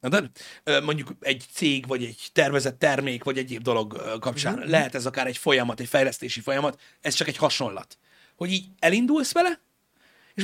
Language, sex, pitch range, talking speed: Hungarian, male, 130-190 Hz, 160 wpm